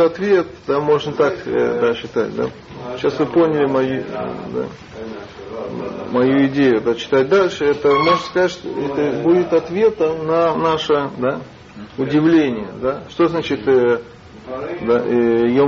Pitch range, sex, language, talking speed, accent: 130-165 Hz, male, Russian, 125 wpm, native